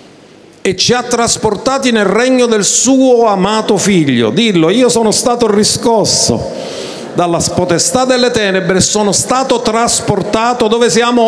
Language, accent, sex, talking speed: Italian, native, male, 130 wpm